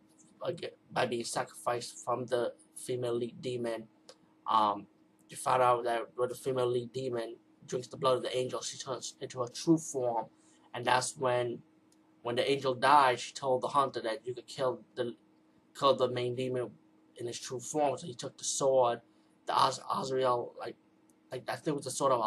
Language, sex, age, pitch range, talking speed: English, male, 20-39, 125-165 Hz, 190 wpm